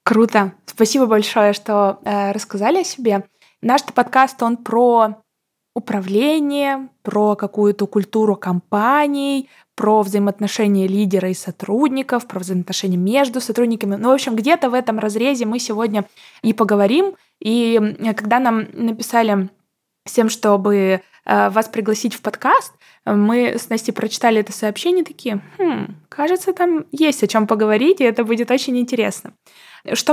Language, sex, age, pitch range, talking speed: Russian, female, 20-39, 210-270 Hz, 130 wpm